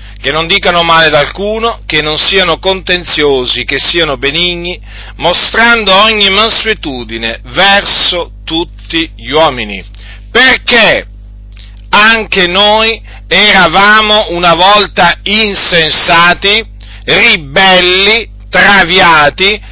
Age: 40-59